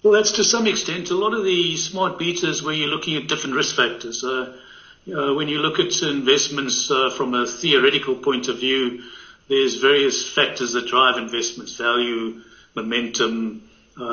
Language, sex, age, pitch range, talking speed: English, male, 60-79, 120-145 Hz, 180 wpm